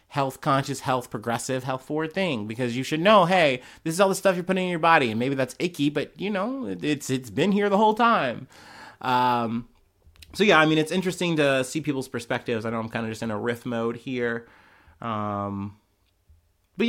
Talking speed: 215 wpm